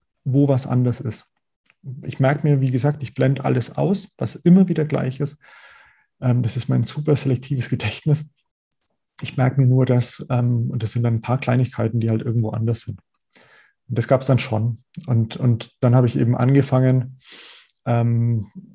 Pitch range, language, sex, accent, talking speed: 120-150 Hz, German, male, German, 175 wpm